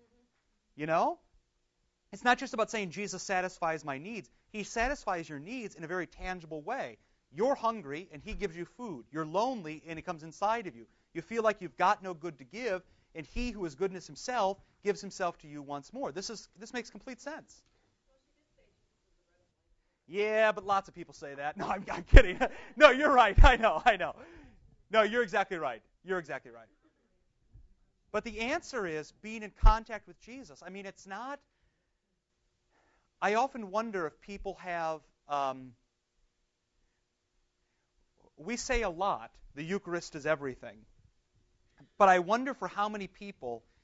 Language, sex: English, male